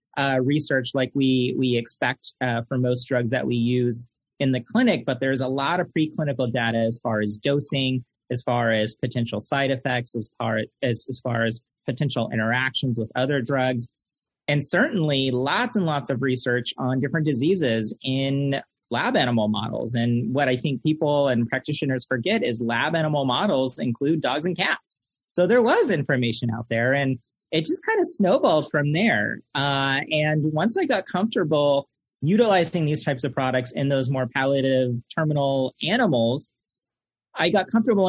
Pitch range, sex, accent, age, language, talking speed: 120-155 Hz, male, American, 30-49, English, 170 wpm